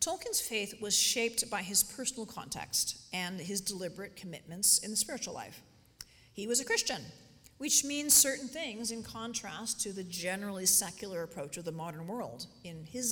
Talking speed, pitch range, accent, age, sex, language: 170 wpm, 185-250 Hz, American, 40-59, female, English